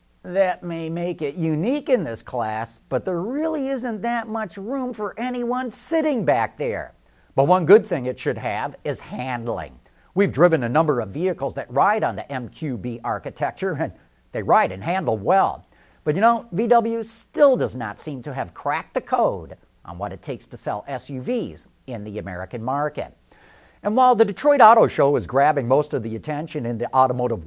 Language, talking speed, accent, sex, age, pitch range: English, 190 wpm, American, male, 50-69, 120-200 Hz